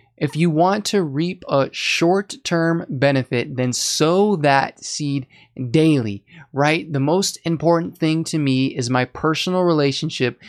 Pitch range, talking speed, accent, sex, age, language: 130-160 Hz, 135 wpm, American, male, 20-39, English